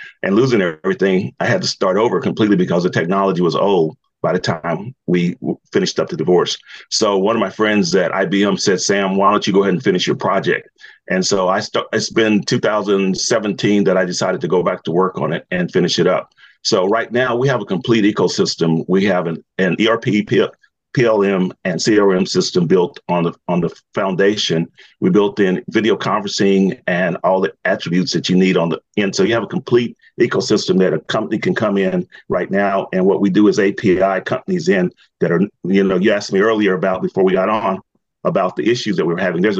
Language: English